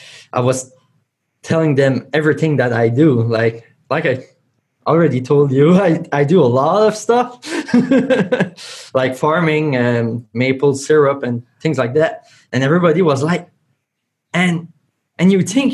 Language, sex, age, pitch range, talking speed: English, male, 20-39, 125-165 Hz, 145 wpm